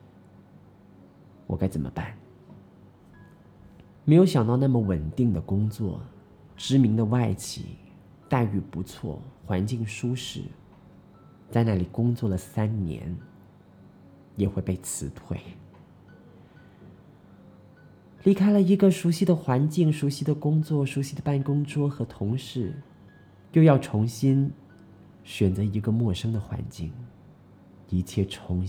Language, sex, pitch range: Chinese, male, 100-140 Hz